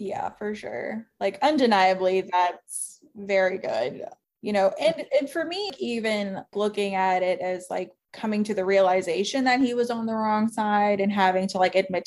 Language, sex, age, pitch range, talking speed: English, female, 20-39, 180-205 Hz, 180 wpm